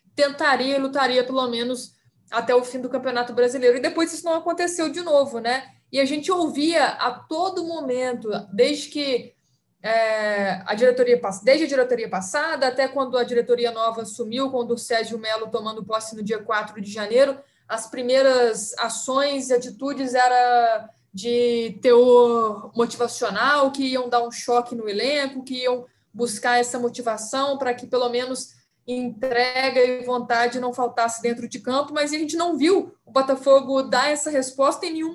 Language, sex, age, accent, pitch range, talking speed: Portuguese, female, 20-39, Brazilian, 235-280 Hz, 165 wpm